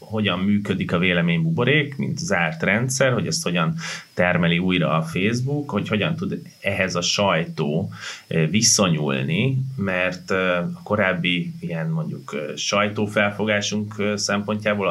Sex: male